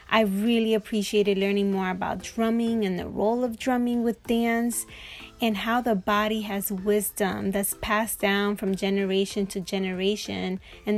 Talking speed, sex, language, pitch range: 155 wpm, female, English, 195-225 Hz